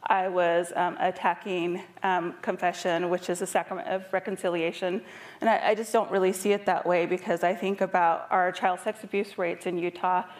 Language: English